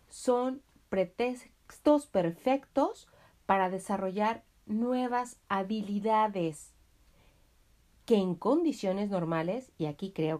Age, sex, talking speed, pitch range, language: 40-59, female, 80 wpm, 170-250 Hz, Spanish